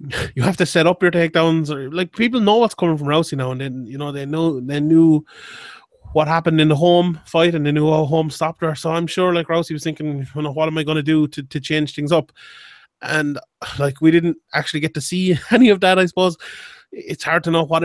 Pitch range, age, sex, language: 155-185 Hz, 20-39, male, English